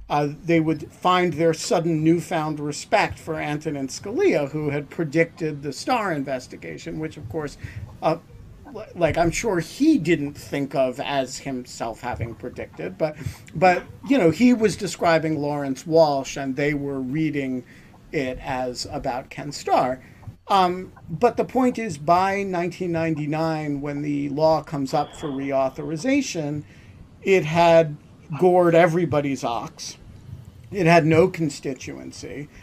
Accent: American